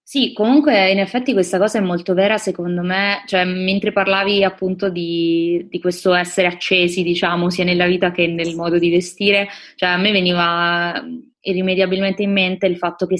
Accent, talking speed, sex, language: native, 175 wpm, female, Italian